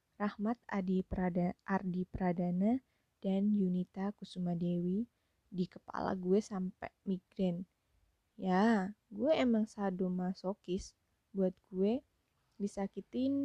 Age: 20-39